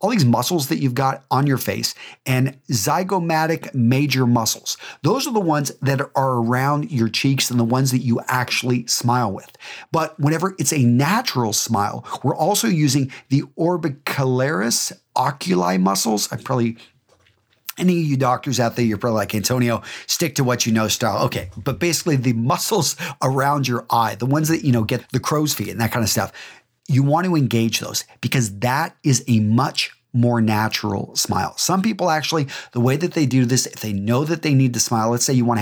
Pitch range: 115-145 Hz